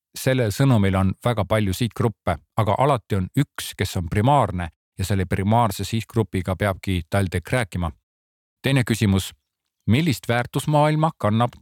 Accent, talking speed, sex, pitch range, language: Finnish, 140 wpm, male, 100-125 Hz, Czech